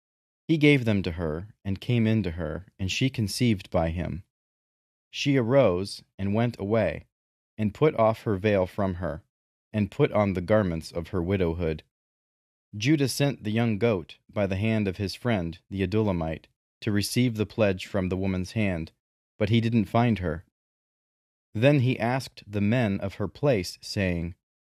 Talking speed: 170 wpm